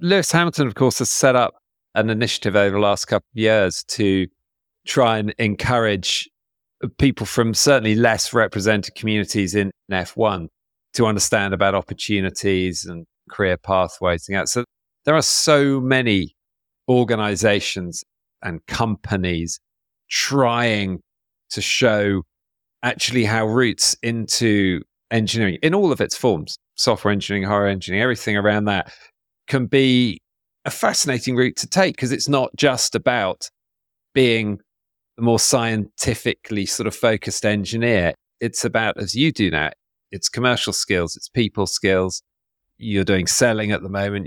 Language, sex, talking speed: English, male, 140 wpm